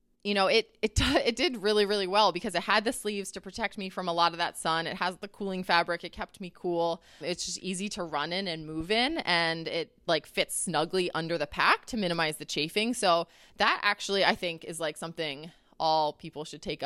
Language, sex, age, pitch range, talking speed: English, female, 20-39, 165-205 Hz, 230 wpm